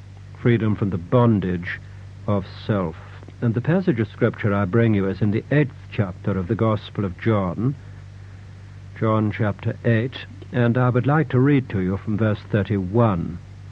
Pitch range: 100-115 Hz